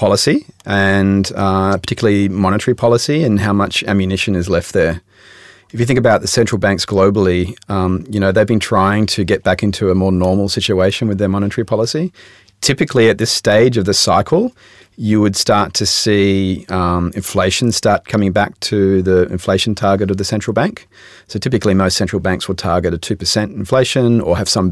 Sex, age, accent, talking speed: male, 30-49, Australian, 185 wpm